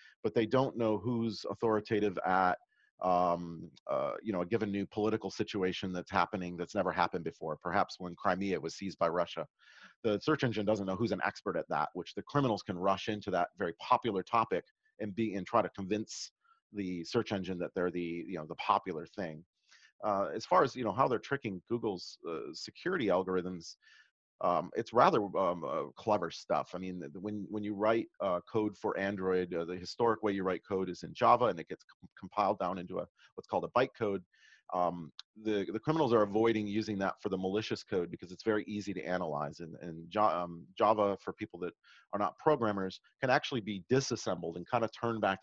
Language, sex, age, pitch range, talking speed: English, male, 40-59, 90-110 Hz, 205 wpm